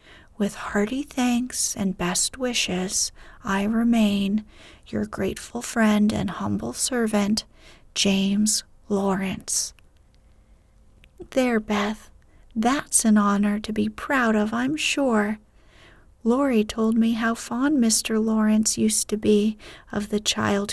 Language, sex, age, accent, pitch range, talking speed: English, female, 40-59, American, 205-240 Hz, 115 wpm